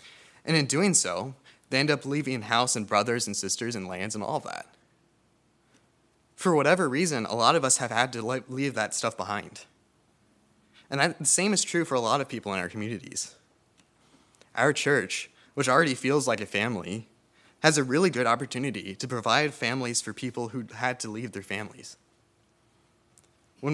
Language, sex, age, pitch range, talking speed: English, male, 20-39, 105-140 Hz, 175 wpm